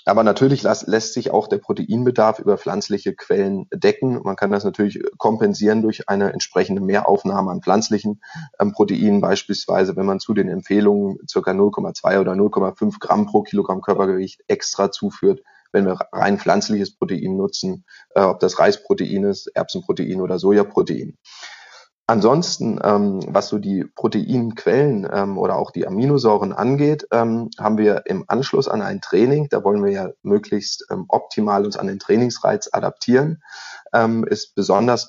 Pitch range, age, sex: 100-130 Hz, 30-49, male